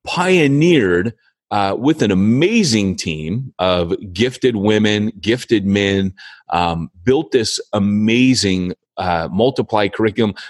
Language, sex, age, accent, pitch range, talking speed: English, male, 30-49, American, 95-125 Hz, 105 wpm